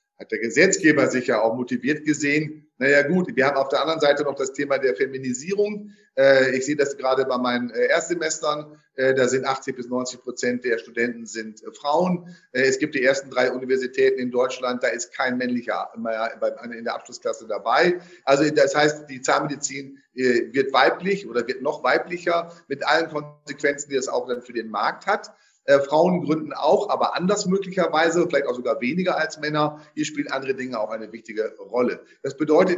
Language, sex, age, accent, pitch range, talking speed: German, male, 40-59, German, 130-180 Hz, 180 wpm